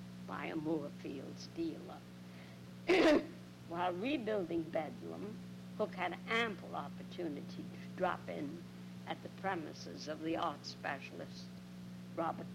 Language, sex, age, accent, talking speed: English, female, 60-79, American, 105 wpm